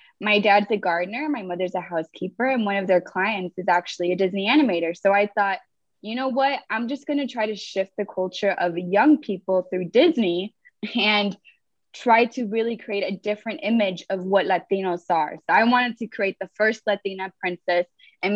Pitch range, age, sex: 185-225 Hz, 20-39, female